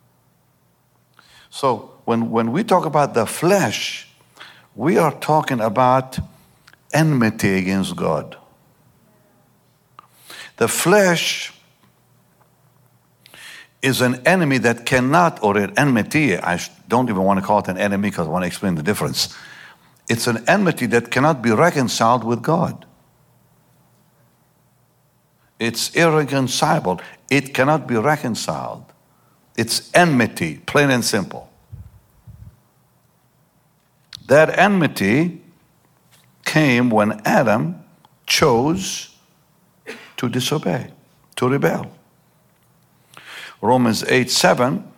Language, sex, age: English, male, 60-79